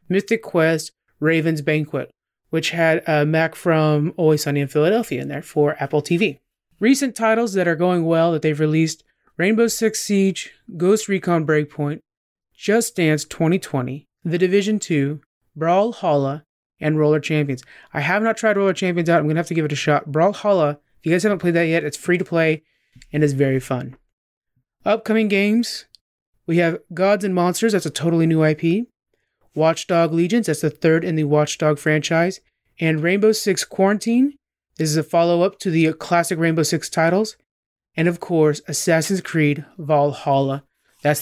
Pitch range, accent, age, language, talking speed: 150-185 Hz, American, 30-49, English, 170 wpm